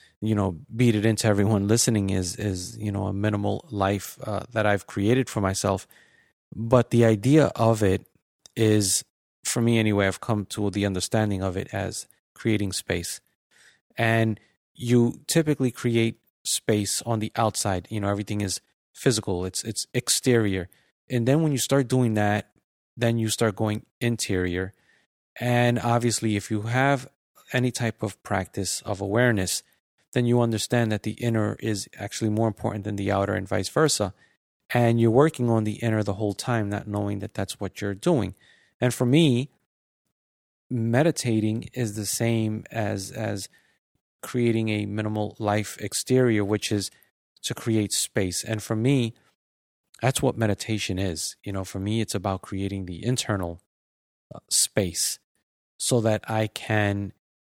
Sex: male